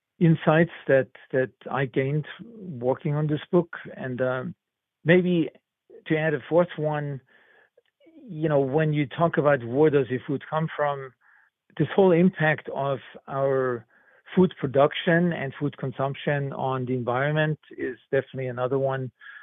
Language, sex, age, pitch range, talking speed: English, male, 50-69, 135-160 Hz, 140 wpm